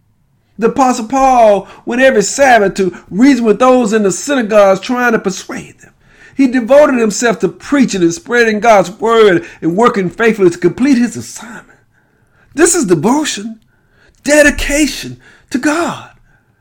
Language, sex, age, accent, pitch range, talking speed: English, male, 50-69, American, 190-265 Hz, 140 wpm